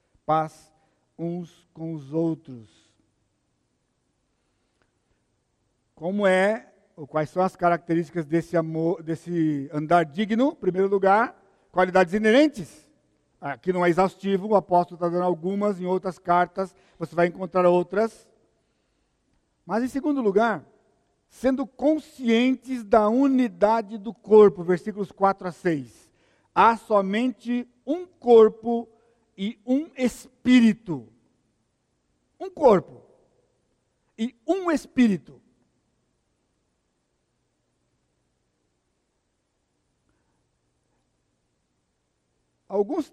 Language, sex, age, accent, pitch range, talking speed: Portuguese, male, 60-79, Brazilian, 150-215 Hz, 90 wpm